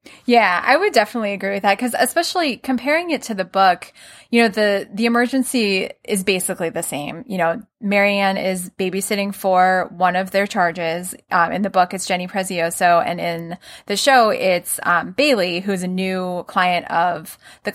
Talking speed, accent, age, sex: 180 wpm, American, 20-39, female